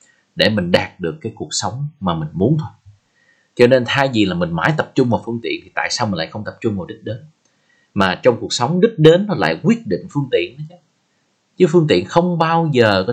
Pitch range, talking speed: 105-160 Hz, 250 wpm